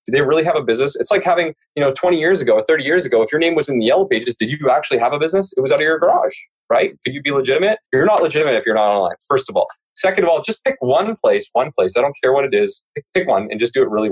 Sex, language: male, English